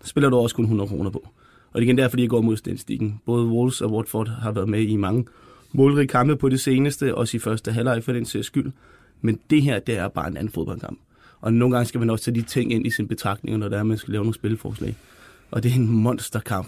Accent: native